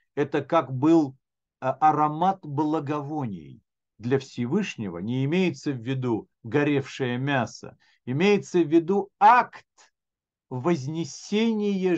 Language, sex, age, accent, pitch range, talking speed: Russian, male, 50-69, native, 115-155 Hz, 90 wpm